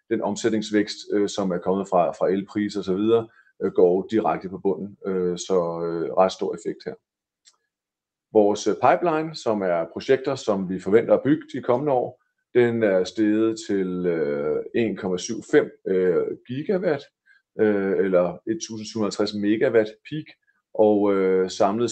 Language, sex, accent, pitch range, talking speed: Danish, male, native, 95-120 Hz, 120 wpm